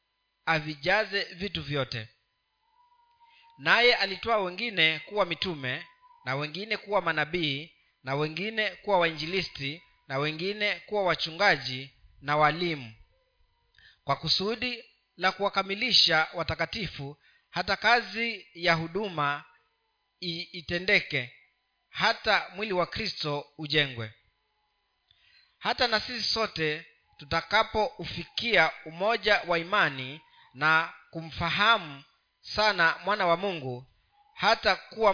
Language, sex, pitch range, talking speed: Swahili, male, 155-210 Hz, 90 wpm